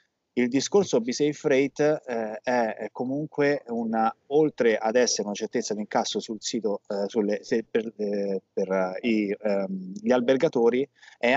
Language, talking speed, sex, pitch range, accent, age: Italian, 155 wpm, male, 110-145 Hz, native, 20-39